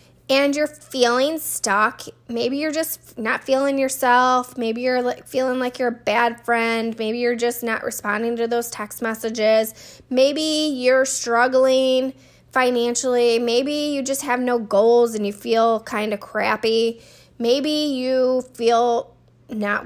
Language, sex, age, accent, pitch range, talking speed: English, female, 10-29, American, 205-260 Hz, 140 wpm